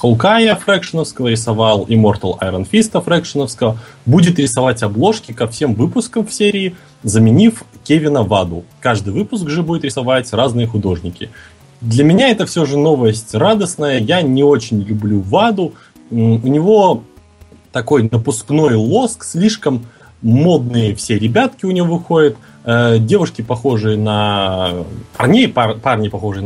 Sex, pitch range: male, 105-145 Hz